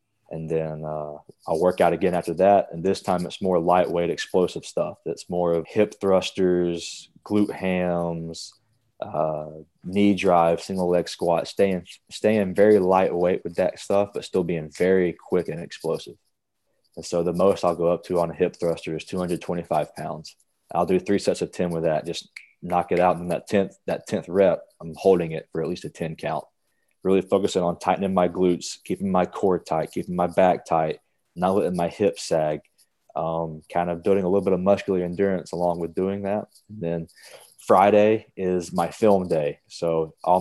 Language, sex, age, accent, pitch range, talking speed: English, male, 20-39, American, 85-95 Hz, 190 wpm